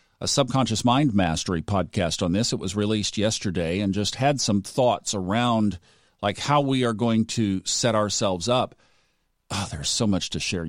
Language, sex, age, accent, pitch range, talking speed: English, male, 50-69, American, 100-125 Hz, 175 wpm